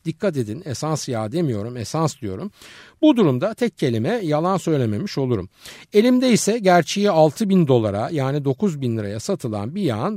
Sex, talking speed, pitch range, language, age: male, 150 wpm, 115-190 Hz, Turkish, 50-69